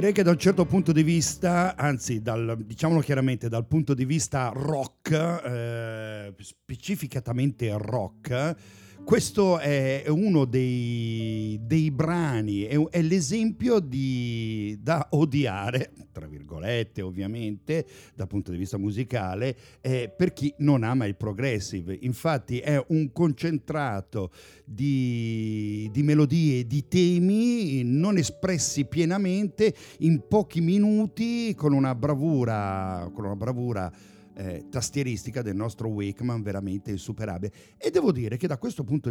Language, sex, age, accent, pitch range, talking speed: English, male, 50-69, Italian, 110-160 Hz, 125 wpm